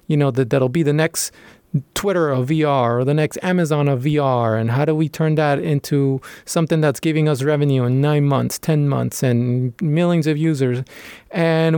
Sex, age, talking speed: male, 20-39, 195 wpm